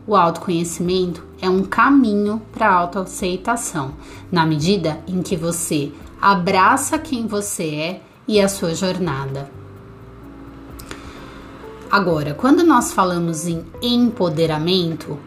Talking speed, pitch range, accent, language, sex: 105 wpm, 160-205 Hz, Brazilian, Portuguese, female